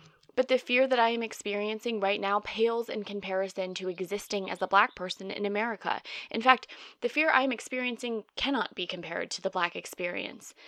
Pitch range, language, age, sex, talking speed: 200-250 Hz, English, 20-39, female, 190 wpm